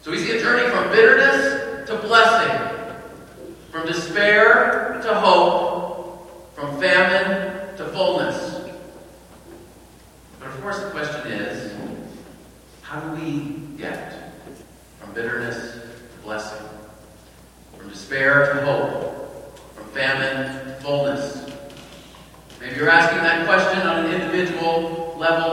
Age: 40-59